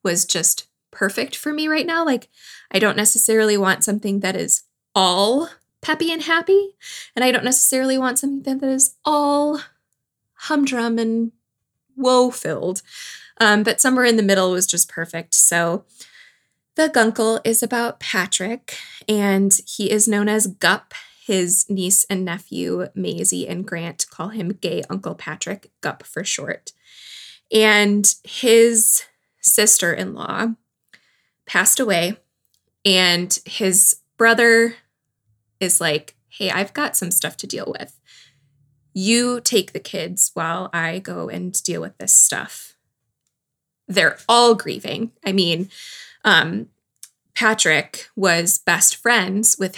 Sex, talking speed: female, 130 wpm